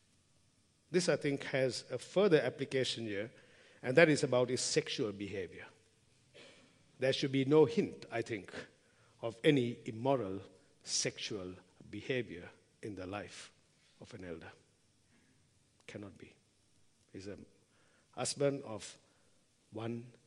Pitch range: 115-155 Hz